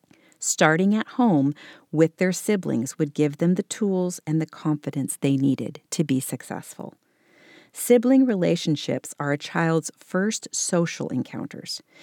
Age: 40-59